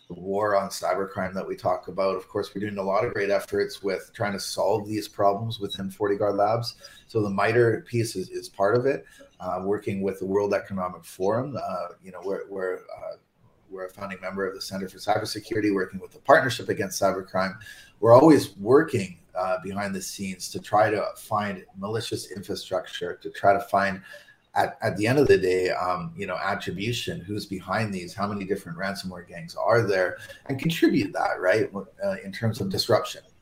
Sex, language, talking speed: male, English, 200 wpm